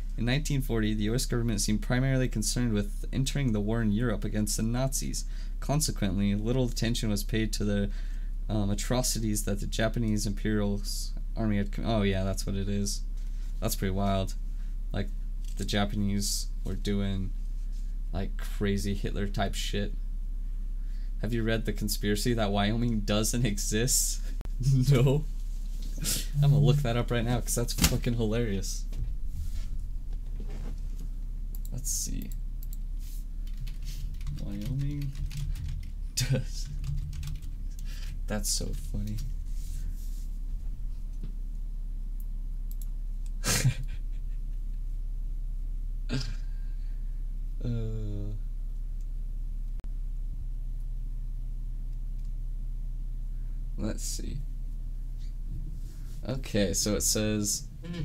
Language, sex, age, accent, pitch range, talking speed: English, male, 20-39, American, 80-120 Hz, 90 wpm